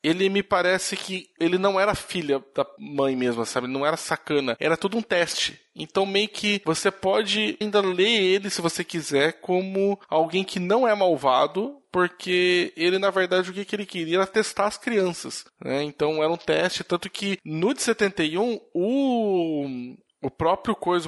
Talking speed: 175 wpm